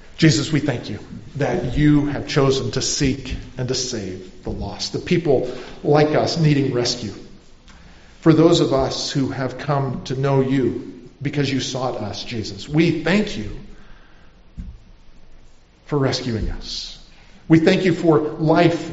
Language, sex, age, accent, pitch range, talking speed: English, male, 50-69, American, 130-165 Hz, 150 wpm